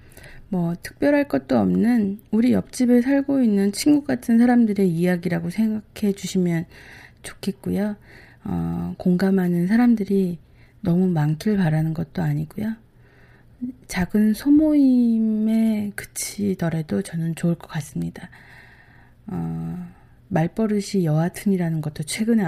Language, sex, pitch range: Korean, female, 155-200 Hz